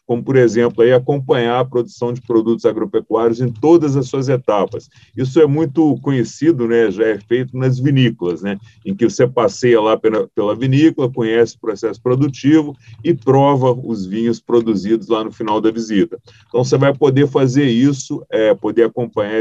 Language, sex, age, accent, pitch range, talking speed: Portuguese, male, 40-59, Brazilian, 115-145 Hz, 170 wpm